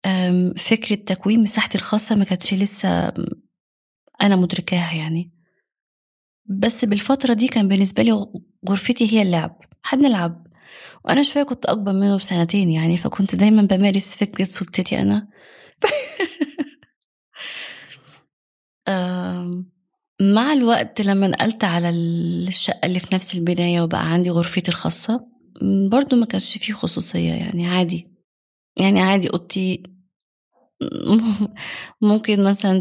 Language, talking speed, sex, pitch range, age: Arabic, 110 wpm, female, 180-220 Hz, 20-39